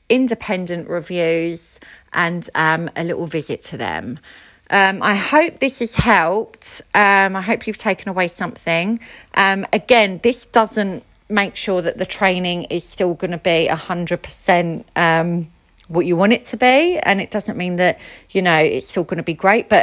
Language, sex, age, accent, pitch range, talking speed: English, female, 40-59, British, 170-215 Hz, 180 wpm